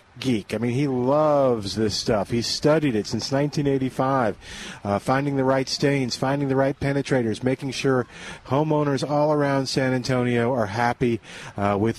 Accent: American